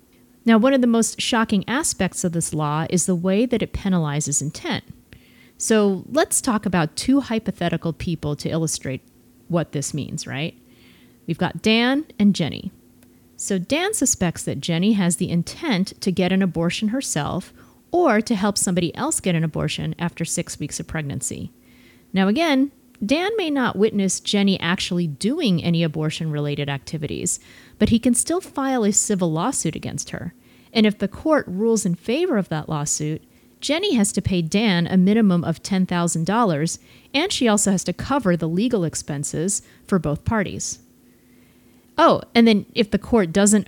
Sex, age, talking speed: female, 30-49, 165 wpm